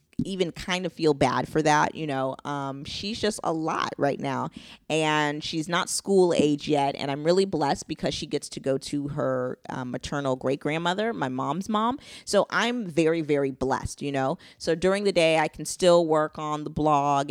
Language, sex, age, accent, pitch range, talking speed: English, female, 20-39, American, 140-170 Hz, 200 wpm